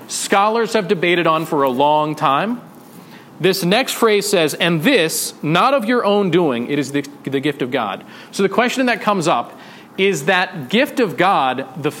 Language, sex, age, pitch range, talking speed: English, male, 40-59, 155-200 Hz, 190 wpm